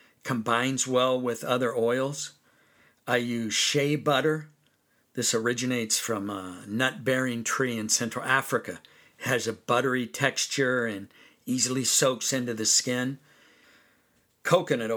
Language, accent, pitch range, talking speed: English, American, 115-135 Hz, 125 wpm